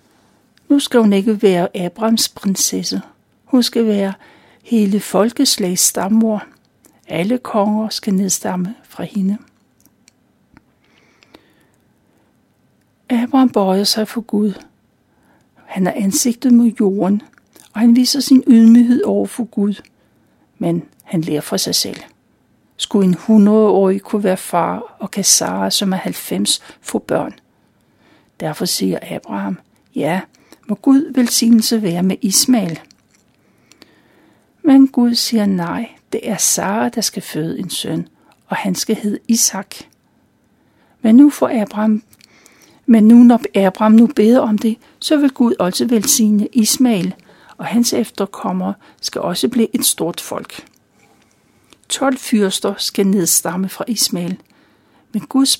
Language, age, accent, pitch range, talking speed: Danish, 60-79, native, 195-240 Hz, 130 wpm